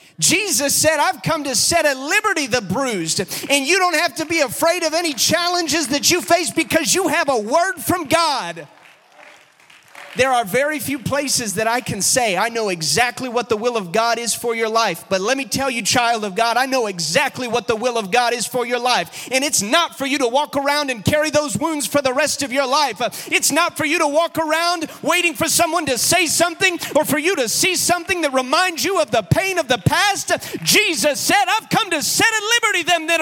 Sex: male